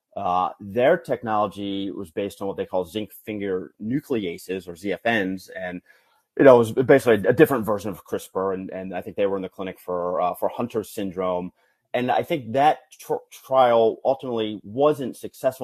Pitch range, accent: 95-115 Hz, American